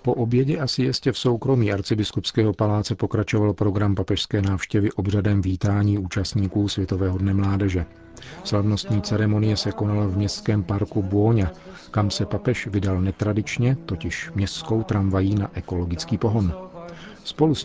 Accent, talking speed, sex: native, 135 wpm, male